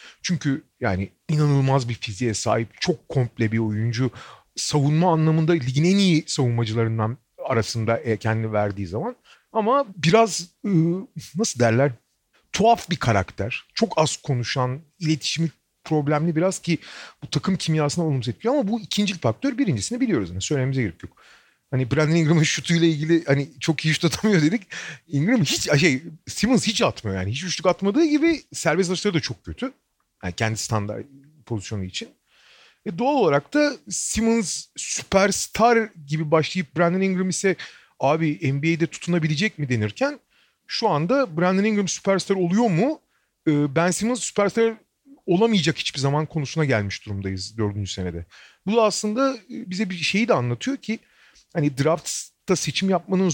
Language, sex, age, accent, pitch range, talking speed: Turkish, male, 40-59, native, 125-195 Hz, 145 wpm